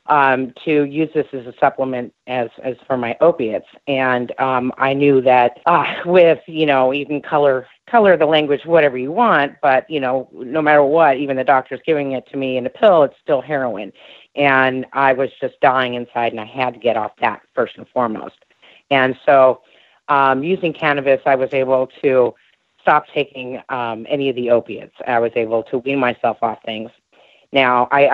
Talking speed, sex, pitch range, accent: 195 wpm, female, 125-155 Hz, American